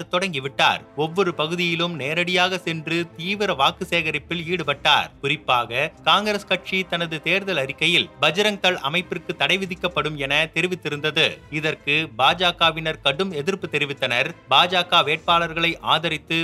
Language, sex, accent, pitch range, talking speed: Tamil, male, native, 155-185 Hz, 65 wpm